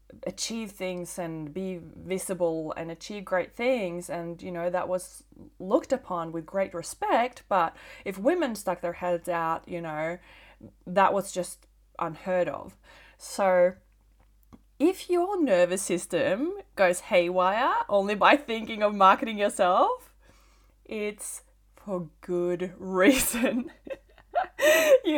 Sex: female